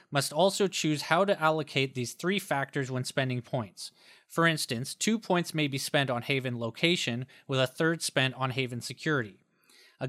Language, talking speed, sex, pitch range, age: English, 180 wpm, male, 125-155 Hz, 30-49